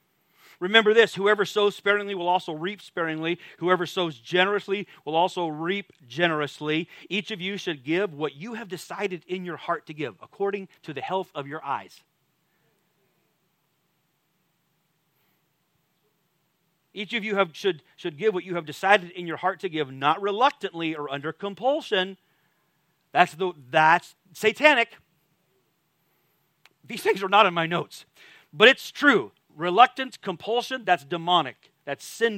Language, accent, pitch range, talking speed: English, American, 165-235 Hz, 145 wpm